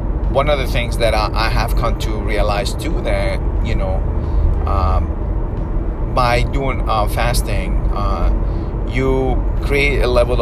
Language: English